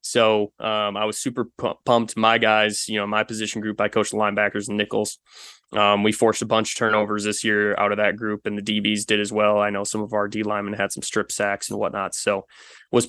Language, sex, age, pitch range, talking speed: English, male, 20-39, 105-110 Hz, 245 wpm